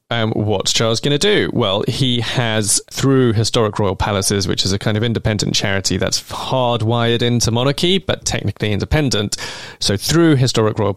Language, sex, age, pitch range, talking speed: English, male, 20-39, 105-130 Hz, 170 wpm